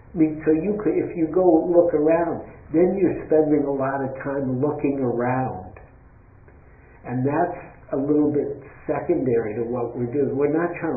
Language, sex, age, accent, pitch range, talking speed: English, male, 60-79, American, 120-160 Hz, 165 wpm